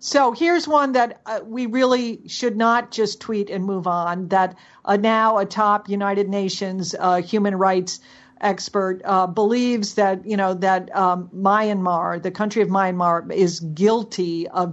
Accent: American